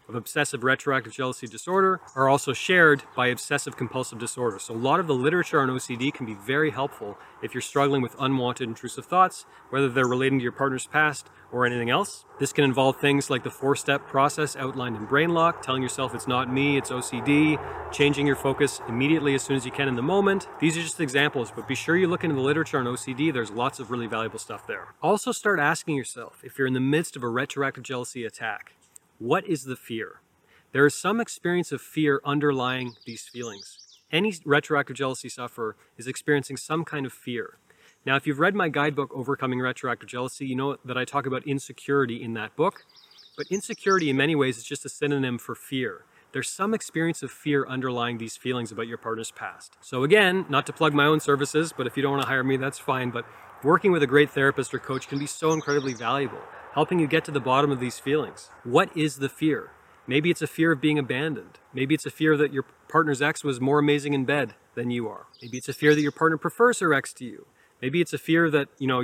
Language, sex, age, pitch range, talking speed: English, male, 30-49, 130-150 Hz, 225 wpm